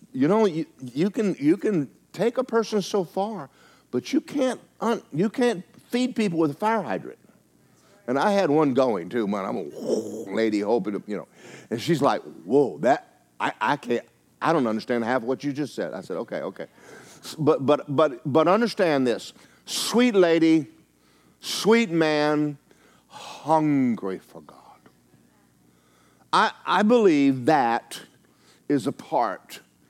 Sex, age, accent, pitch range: male, 50-69, American, 145-230 Hz